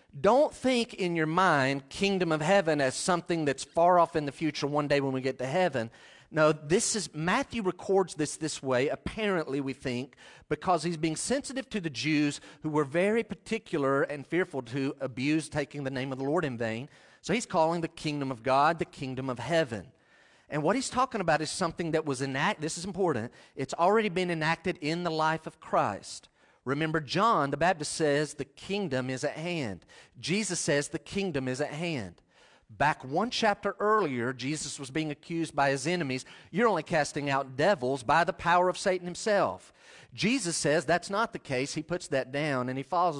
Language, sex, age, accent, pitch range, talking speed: English, male, 40-59, American, 140-180 Hz, 195 wpm